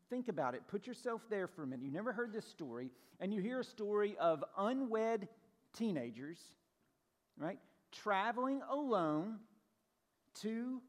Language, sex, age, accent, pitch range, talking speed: English, male, 50-69, American, 190-245 Hz, 145 wpm